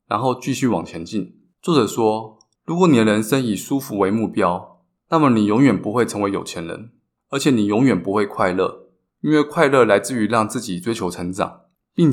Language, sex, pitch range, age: Chinese, male, 100-135 Hz, 20-39